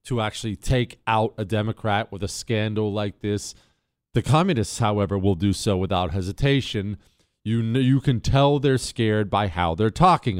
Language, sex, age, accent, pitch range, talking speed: English, male, 40-59, American, 105-150 Hz, 165 wpm